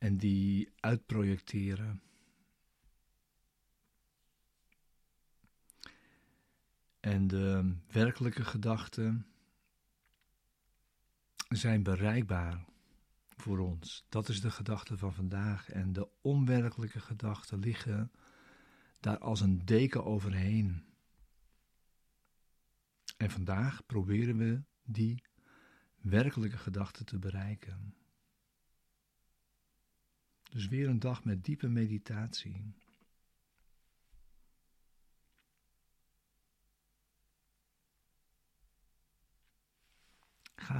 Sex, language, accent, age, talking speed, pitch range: male, Dutch, Dutch, 50-69, 65 wpm, 100-115 Hz